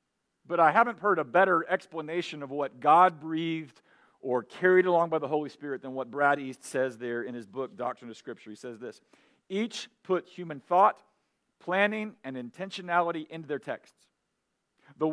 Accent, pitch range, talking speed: American, 135-200 Hz, 175 wpm